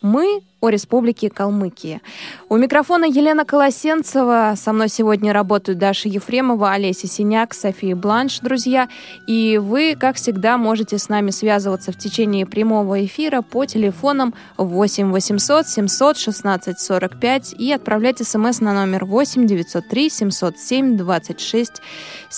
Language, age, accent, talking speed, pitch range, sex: Russian, 20-39, native, 125 wpm, 200-255 Hz, female